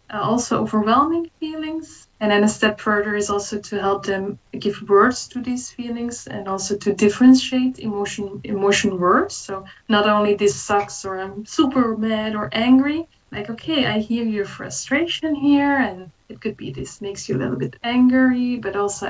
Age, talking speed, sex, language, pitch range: 20-39, 180 wpm, female, English, 205-245 Hz